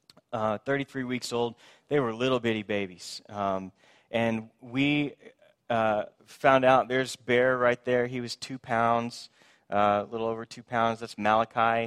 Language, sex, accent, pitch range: English, male, American, 110-130 Hz